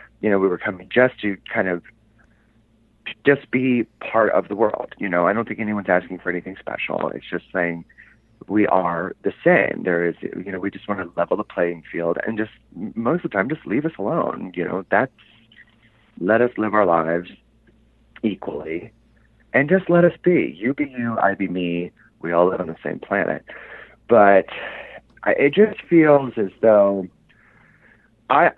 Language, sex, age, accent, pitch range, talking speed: English, male, 30-49, American, 90-115 Hz, 185 wpm